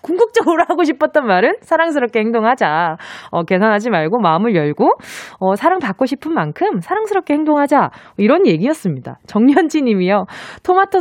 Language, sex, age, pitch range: Korean, female, 20-39, 225-340 Hz